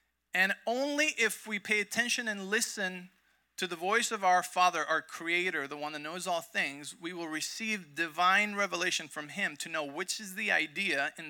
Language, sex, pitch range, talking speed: English, male, 165-205 Hz, 190 wpm